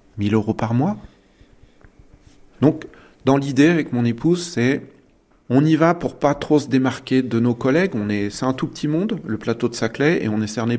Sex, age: male, 40-59